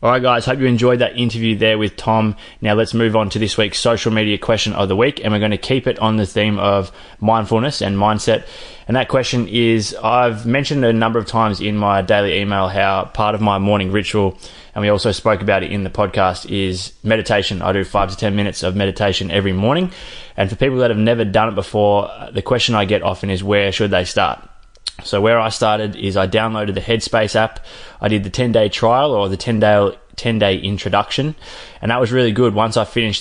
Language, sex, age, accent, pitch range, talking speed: English, male, 20-39, Australian, 100-115 Hz, 230 wpm